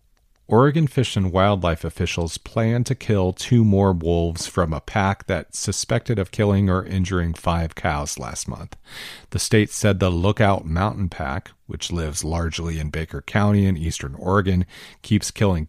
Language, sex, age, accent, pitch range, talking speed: English, male, 40-59, American, 85-105 Hz, 160 wpm